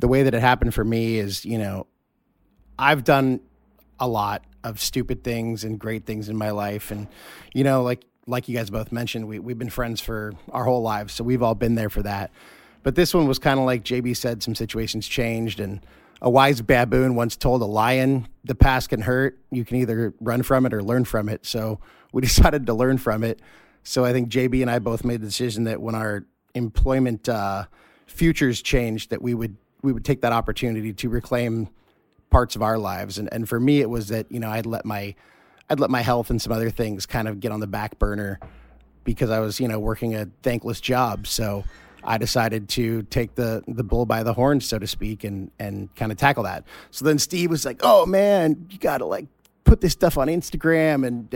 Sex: male